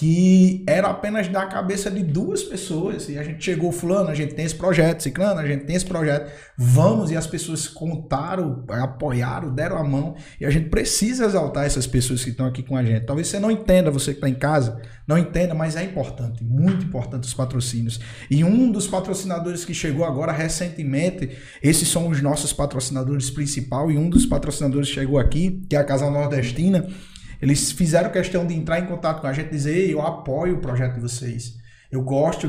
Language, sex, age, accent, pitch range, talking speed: Portuguese, male, 20-39, Brazilian, 135-175 Hz, 205 wpm